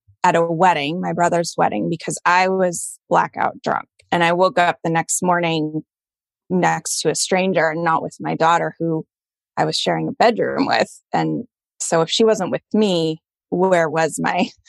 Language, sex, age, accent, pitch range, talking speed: English, female, 20-39, American, 165-210 Hz, 180 wpm